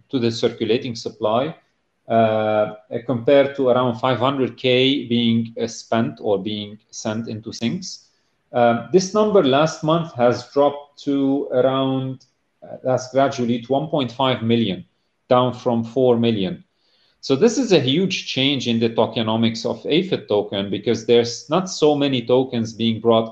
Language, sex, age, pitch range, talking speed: English, male, 40-59, 115-140 Hz, 140 wpm